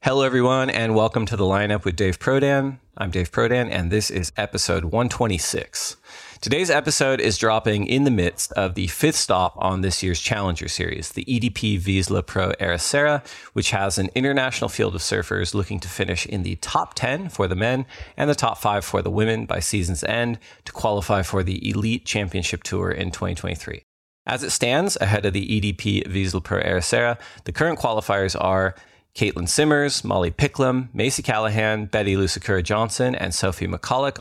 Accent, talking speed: American, 175 wpm